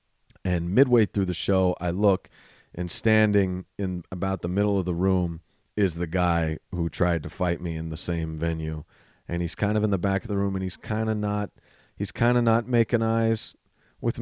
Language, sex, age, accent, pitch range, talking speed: English, male, 40-59, American, 90-110 Hz, 210 wpm